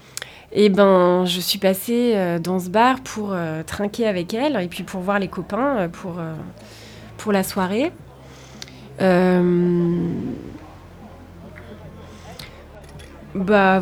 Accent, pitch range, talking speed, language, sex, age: French, 170-205 Hz, 120 wpm, French, female, 20-39